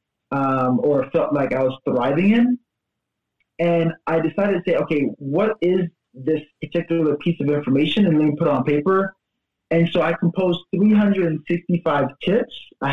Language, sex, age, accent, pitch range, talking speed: English, male, 20-39, American, 140-175 Hz, 160 wpm